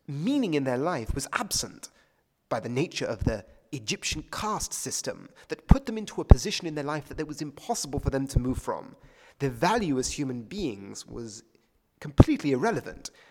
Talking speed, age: 180 wpm, 30-49